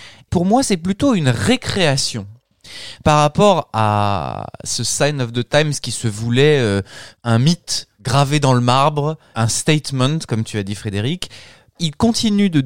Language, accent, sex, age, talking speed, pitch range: French, French, male, 20-39, 160 wpm, 115-165 Hz